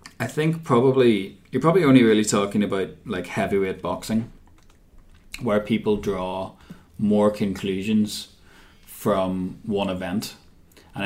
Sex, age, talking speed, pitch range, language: male, 20-39, 115 wpm, 90-105 Hz, English